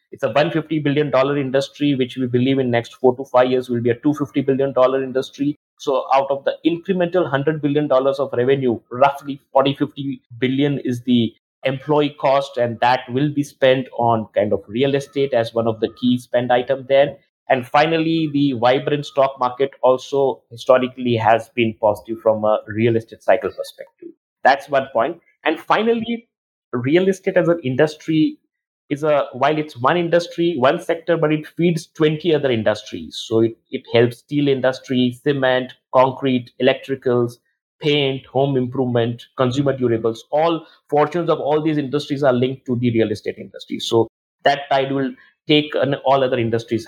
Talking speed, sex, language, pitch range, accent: 175 wpm, male, English, 120-150 Hz, Indian